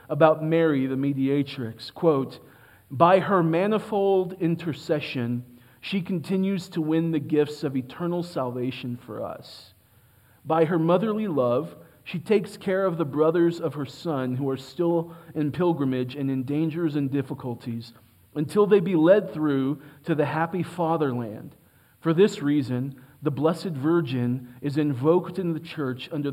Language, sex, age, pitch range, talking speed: English, male, 40-59, 130-170 Hz, 145 wpm